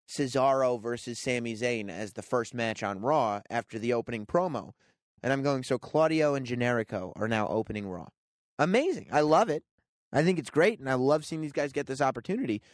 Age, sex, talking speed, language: 30-49, male, 200 wpm, English